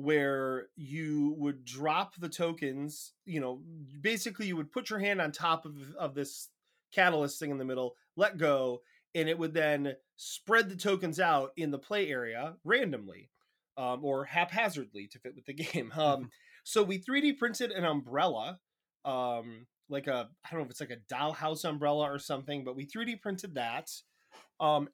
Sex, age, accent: male, 20-39, American